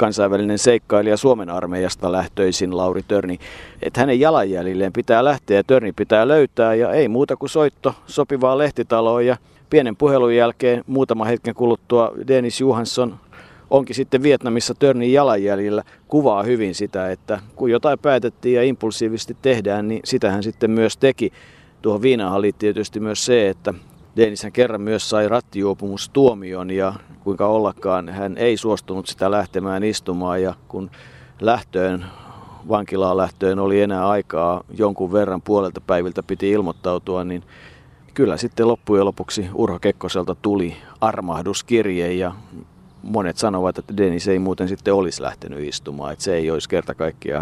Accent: native